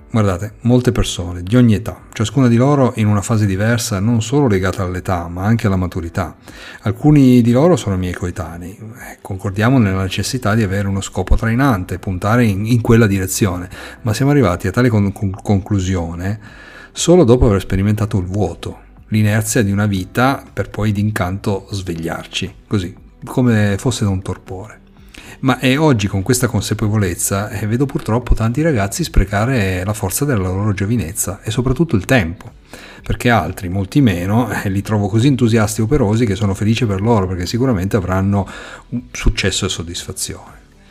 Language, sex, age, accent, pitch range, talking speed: Italian, male, 40-59, native, 95-120 Hz, 160 wpm